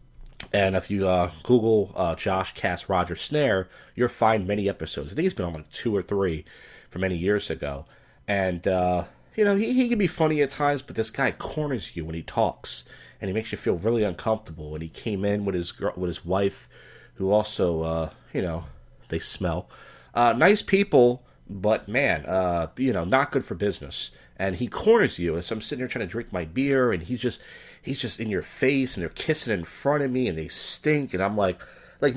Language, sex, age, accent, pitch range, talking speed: English, male, 30-49, American, 85-125 Hz, 220 wpm